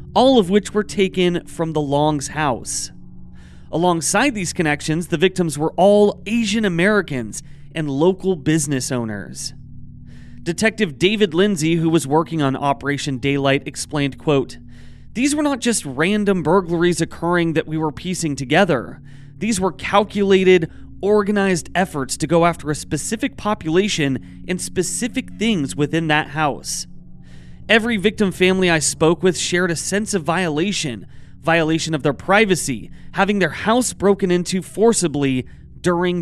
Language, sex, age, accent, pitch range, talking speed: English, male, 30-49, American, 150-195 Hz, 140 wpm